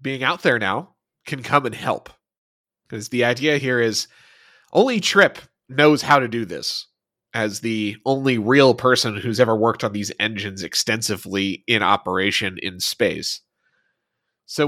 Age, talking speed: 30-49, 150 wpm